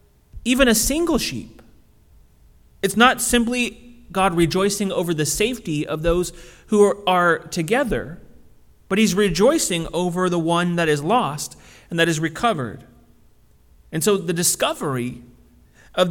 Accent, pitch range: American, 150-210 Hz